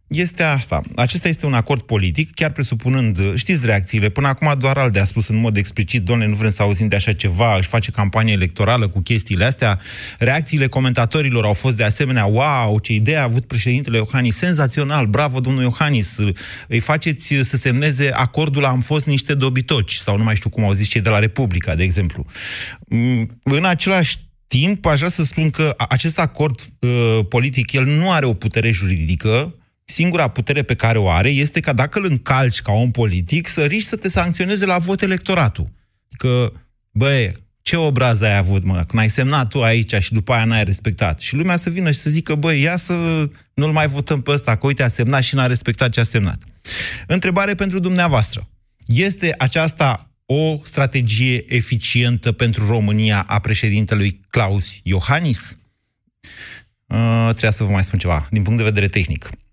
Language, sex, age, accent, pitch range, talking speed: Romanian, male, 30-49, native, 110-145 Hz, 180 wpm